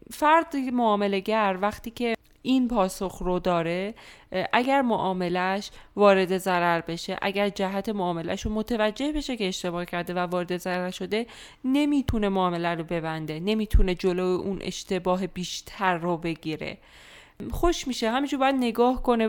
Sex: female